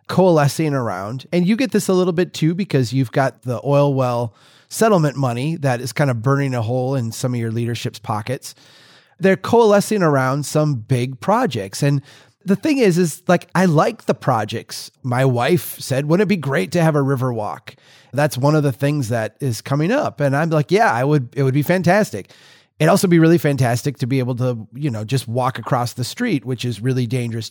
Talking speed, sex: 215 wpm, male